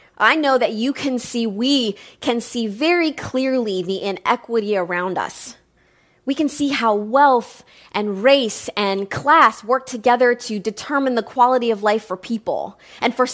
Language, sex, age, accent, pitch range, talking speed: English, female, 20-39, American, 205-250 Hz, 160 wpm